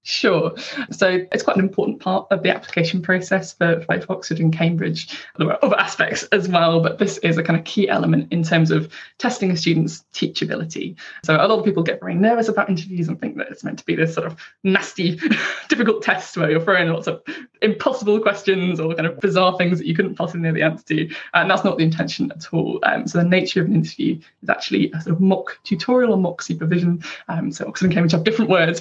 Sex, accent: female, British